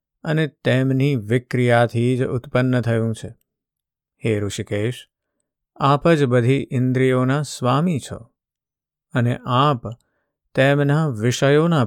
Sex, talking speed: male, 95 wpm